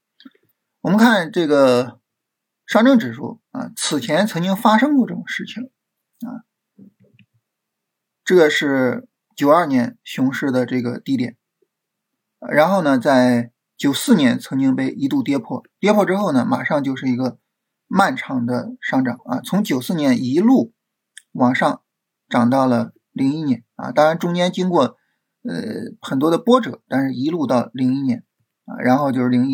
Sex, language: male, Chinese